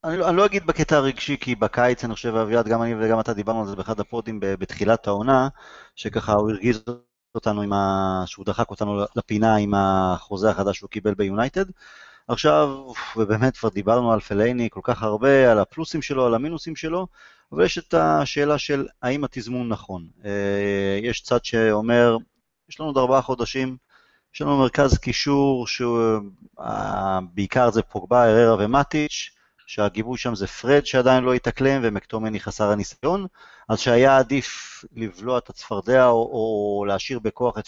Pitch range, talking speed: 110-145 Hz, 160 wpm